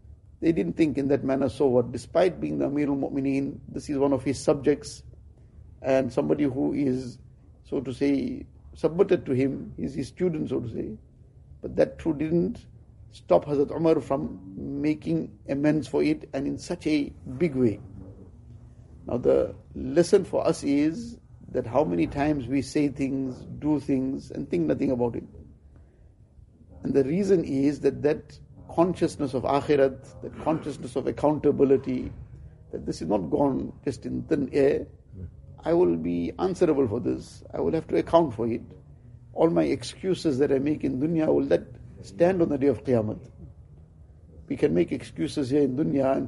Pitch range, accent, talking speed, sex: 120-150 Hz, Indian, 170 wpm, male